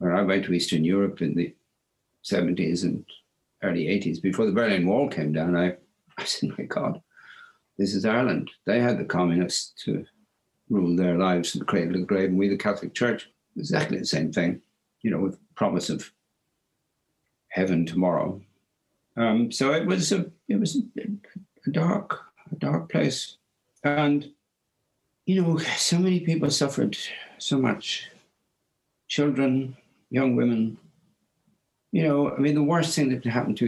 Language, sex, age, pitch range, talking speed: English, male, 60-79, 100-155 Hz, 165 wpm